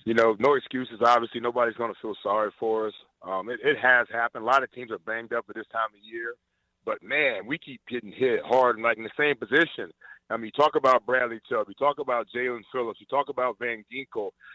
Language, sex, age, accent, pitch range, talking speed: English, male, 30-49, American, 115-135 Hz, 245 wpm